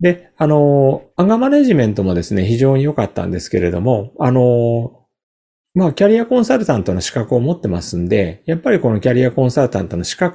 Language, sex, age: Japanese, male, 40-59